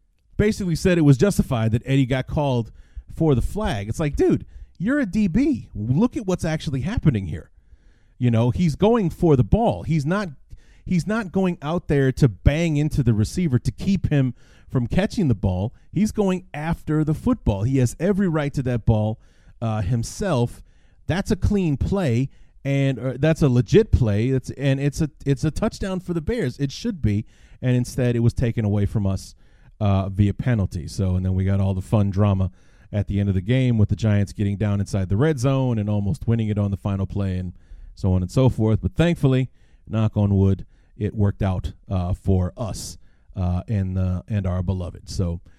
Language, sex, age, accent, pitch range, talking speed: English, male, 30-49, American, 100-155 Hz, 200 wpm